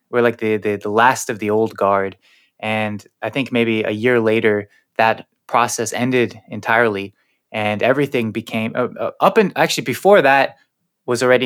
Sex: male